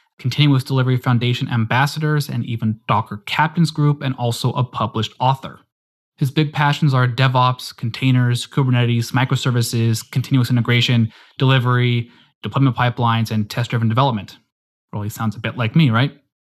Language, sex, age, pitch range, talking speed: English, male, 20-39, 120-145 Hz, 135 wpm